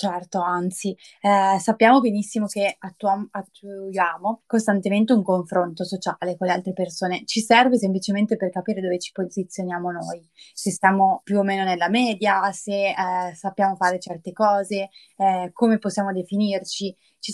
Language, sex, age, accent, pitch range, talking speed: Italian, female, 20-39, native, 180-205 Hz, 145 wpm